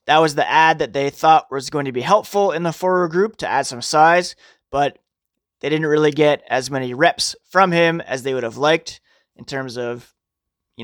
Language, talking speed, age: English, 215 wpm, 20-39